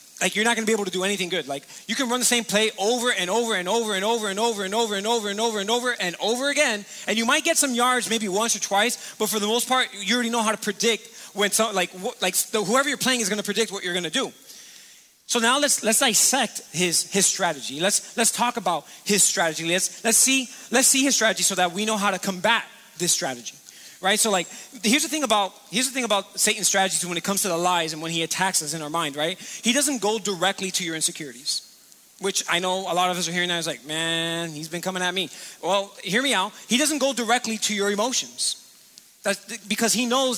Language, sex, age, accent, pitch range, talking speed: English, male, 20-39, American, 185-235 Hz, 245 wpm